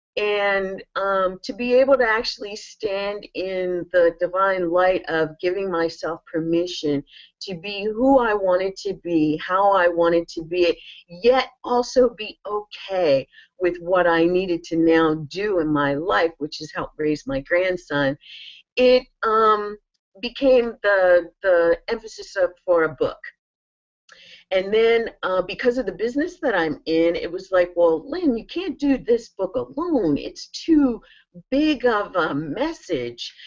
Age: 40-59